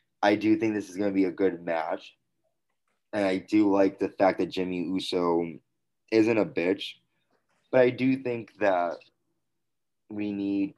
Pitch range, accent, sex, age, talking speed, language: 90-105 Hz, American, male, 20-39, 165 wpm, English